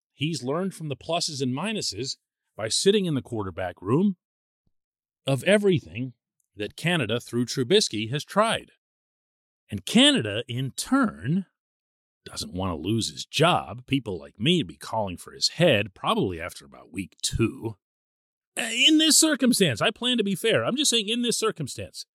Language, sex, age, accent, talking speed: English, male, 40-59, American, 160 wpm